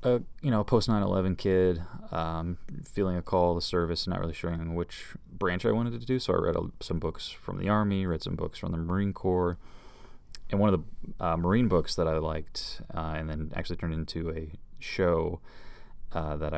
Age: 20-39